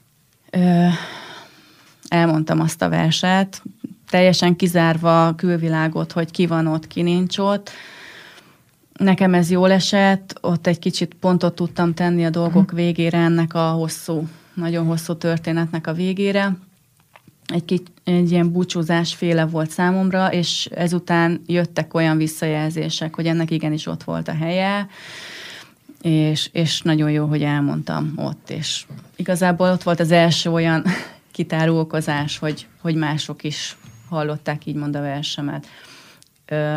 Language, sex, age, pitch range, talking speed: Hungarian, female, 30-49, 160-180 Hz, 130 wpm